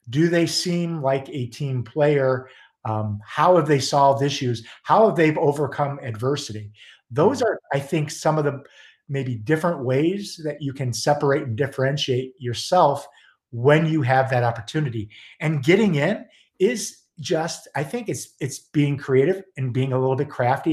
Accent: American